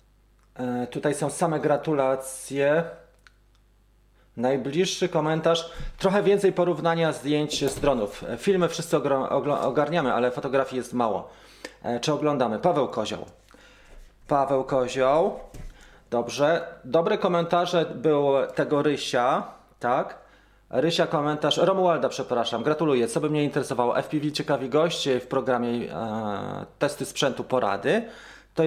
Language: Polish